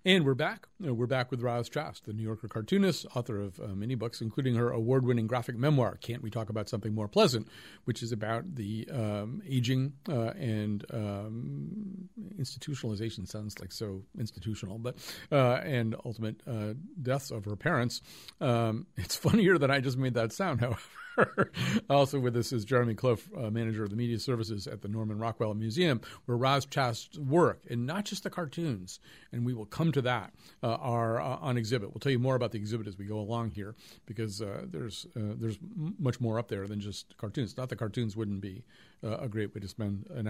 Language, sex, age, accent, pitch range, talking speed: English, male, 50-69, American, 110-135 Hz, 200 wpm